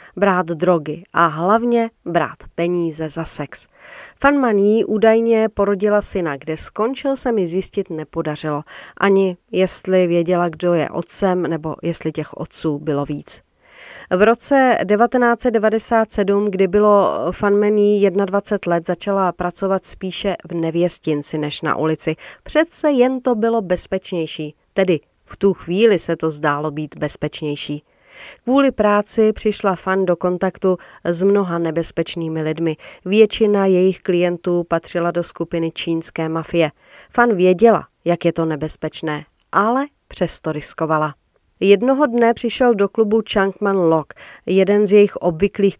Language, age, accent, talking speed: Czech, 40-59, native, 130 wpm